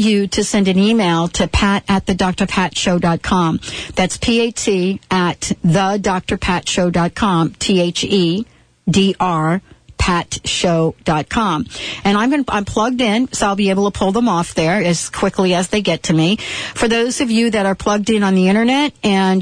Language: English